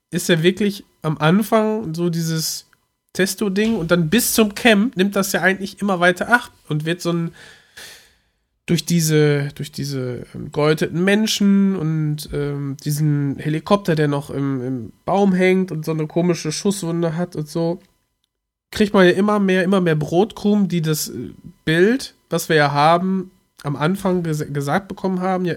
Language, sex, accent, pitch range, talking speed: German, male, German, 150-200 Hz, 165 wpm